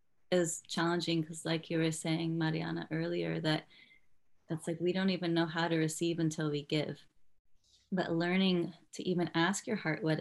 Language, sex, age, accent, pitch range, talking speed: English, female, 30-49, American, 155-170 Hz, 175 wpm